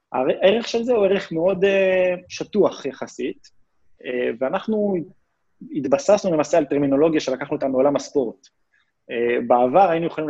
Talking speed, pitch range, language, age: 135 wpm, 135-190 Hz, Hebrew, 20-39